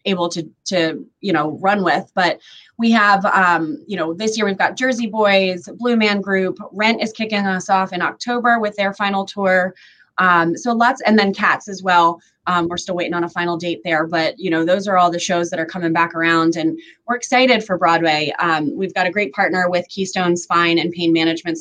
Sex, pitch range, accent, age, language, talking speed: female, 170-215 Hz, American, 20-39, English, 220 wpm